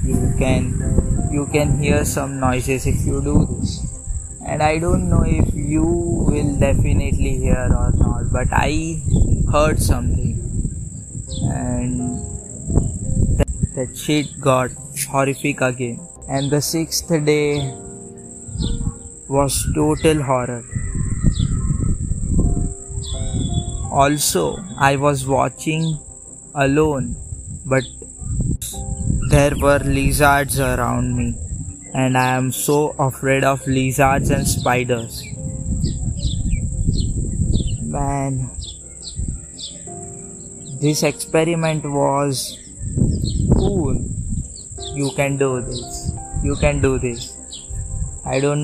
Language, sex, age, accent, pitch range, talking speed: Hindi, male, 20-39, native, 115-140 Hz, 90 wpm